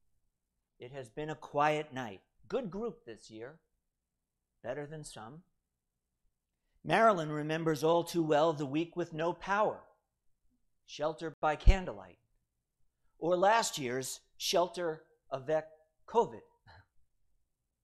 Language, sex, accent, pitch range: English, male, American, 115-160 Hz